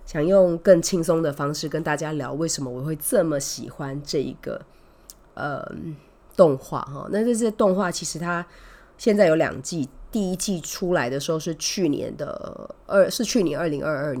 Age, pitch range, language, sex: 20-39, 145-175 Hz, Chinese, female